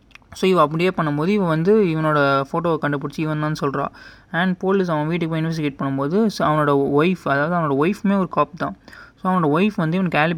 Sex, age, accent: male, 20-39, native